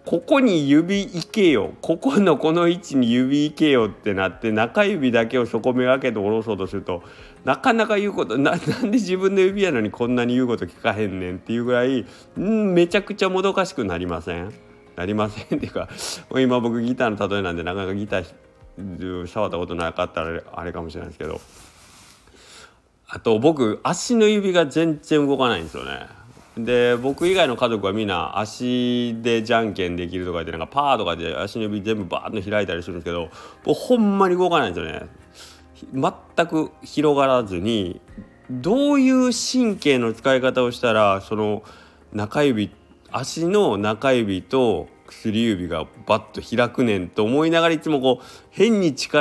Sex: male